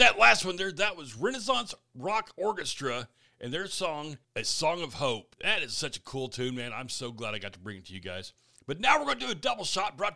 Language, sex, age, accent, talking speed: English, male, 40-59, American, 260 wpm